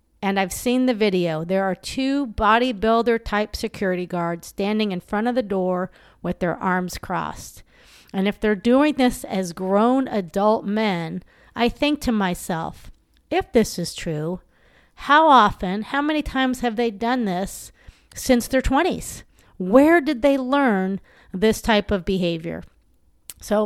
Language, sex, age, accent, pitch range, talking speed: English, female, 40-59, American, 205-280 Hz, 150 wpm